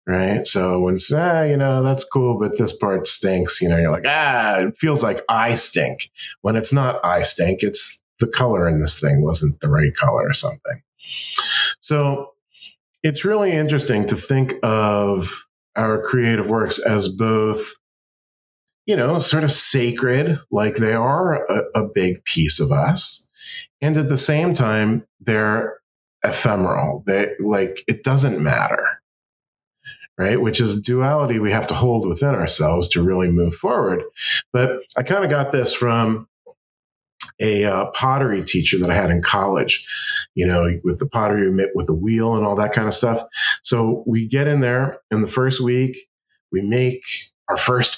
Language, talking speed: English, 170 wpm